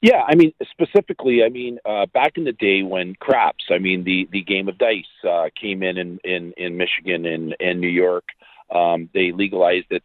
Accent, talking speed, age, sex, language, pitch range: American, 215 wpm, 40-59, male, English, 90-115 Hz